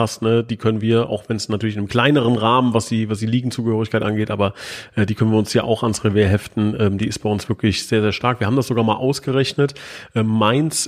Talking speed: 245 wpm